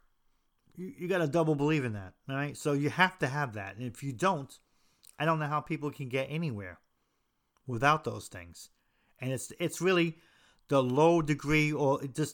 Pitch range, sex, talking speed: 120-155 Hz, male, 190 wpm